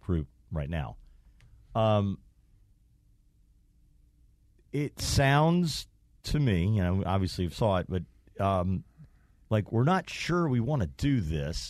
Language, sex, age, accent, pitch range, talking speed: English, male, 40-59, American, 95-135 Hz, 130 wpm